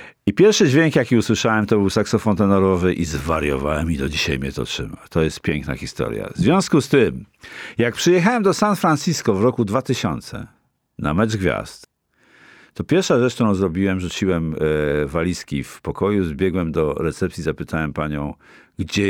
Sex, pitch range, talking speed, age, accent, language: male, 90-125 Hz, 160 wpm, 50-69, native, Polish